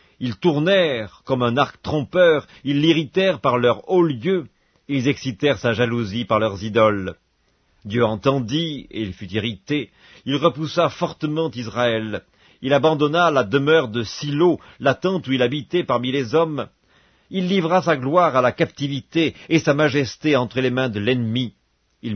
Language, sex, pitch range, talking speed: English, male, 115-150 Hz, 160 wpm